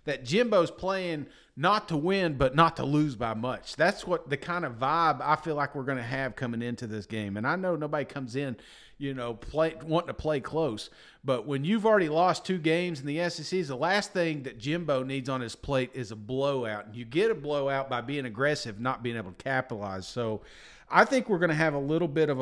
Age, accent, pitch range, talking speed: 40-59, American, 135-190 Hz, 230 wpm